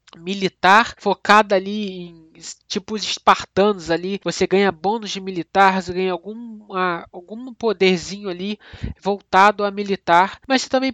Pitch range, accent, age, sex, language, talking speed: 185-225 Hz, Brazilian, 20-39, male, Portuguese, 135 wpm